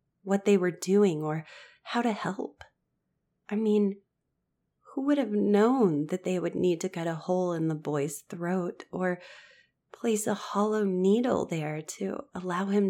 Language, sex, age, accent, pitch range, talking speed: English, female, 30-49, American, 170-210 Hz, 165 wpm